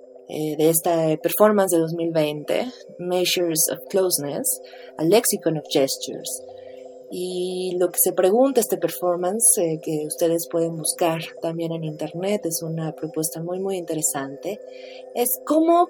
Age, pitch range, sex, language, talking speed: 30-49, 175-250 Hz, female, Spanish, 135 wpm